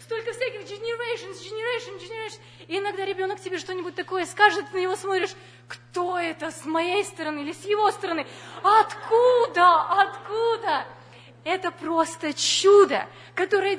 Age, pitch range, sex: 20-39, 305-395 Hz, female